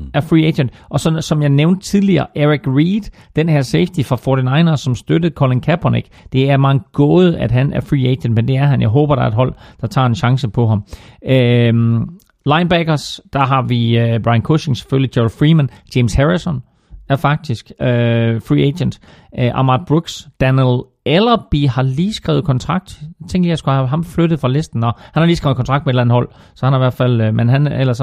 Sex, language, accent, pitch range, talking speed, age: male, Danish, native, 120-150 Hz, 220 wpm, 40-59